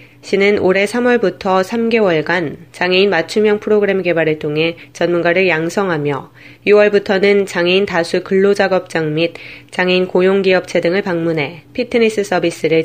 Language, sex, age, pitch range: Korean, female, 20-39, 170-205 Hz